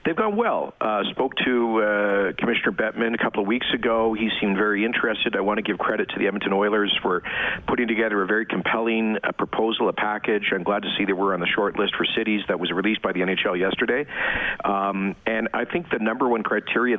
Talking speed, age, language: 225 wpm, 50-69, English